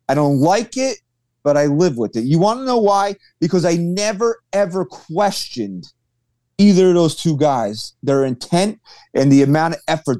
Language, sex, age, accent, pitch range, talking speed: English, male, 30-49, American, 135-210 Hz, 180 wpm